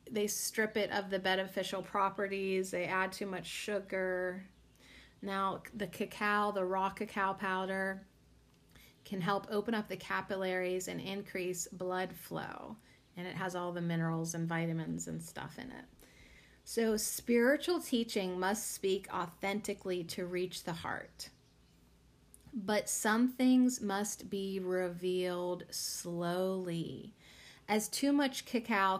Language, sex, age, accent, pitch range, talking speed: English, female, 30-49, American, 180-210 Hz, 130 wpm